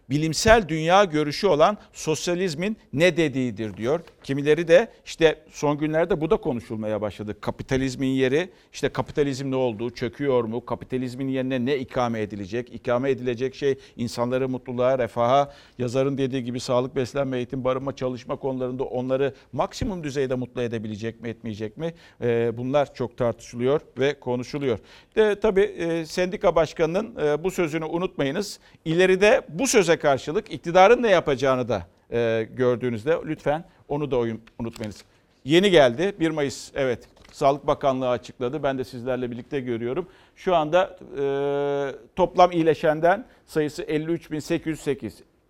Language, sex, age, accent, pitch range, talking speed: Turkish, male, 50-69, native, 125-160 Hz, 130 wpm